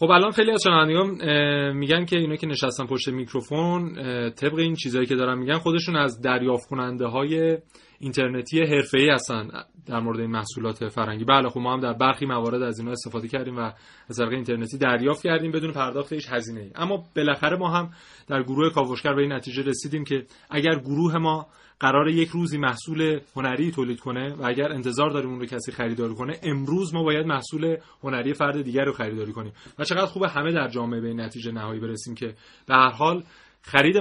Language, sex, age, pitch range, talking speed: Persian, male, 30-49, 125-155 Hz, 185 wpm